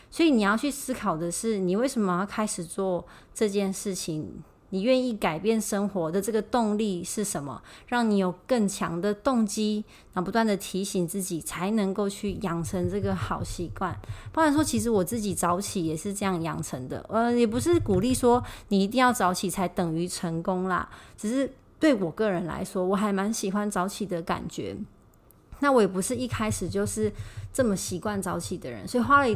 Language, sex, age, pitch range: Chinese, female, 30-49, 165-225 Hz